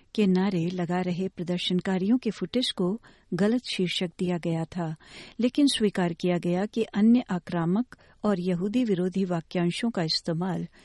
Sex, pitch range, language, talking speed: female, 175-220 Hz, Hindi, 145 wpm